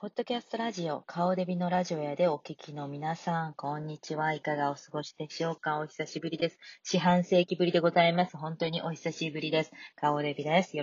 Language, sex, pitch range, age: Japanese, female, 150-215 Hz, 30-49